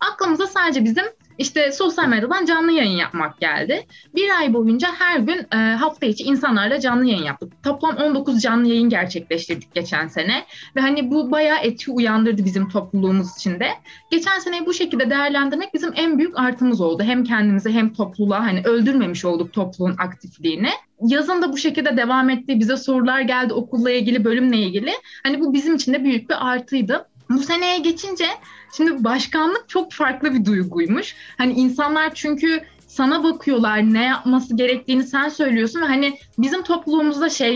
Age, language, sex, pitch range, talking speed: 20-39, Turkish, female, 220-305 Hz, 160 wpm